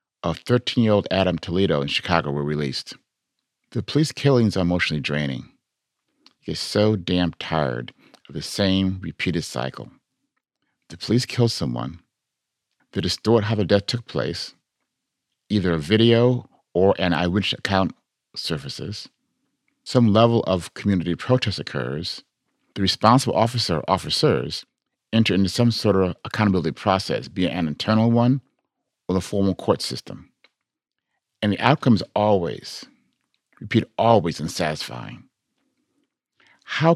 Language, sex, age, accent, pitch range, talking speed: English, male, 50-69, American, 85-115 Hz, 130 wpm